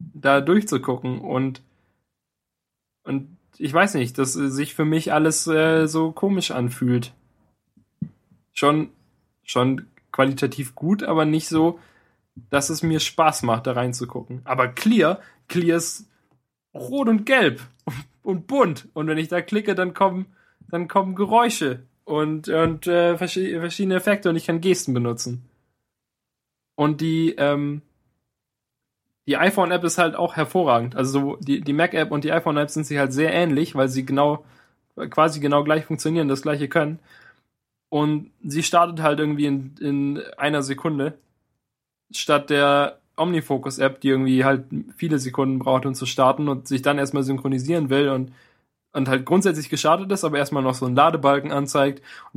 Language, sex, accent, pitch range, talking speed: German, male, German, 130-165 Hz, 150 wpm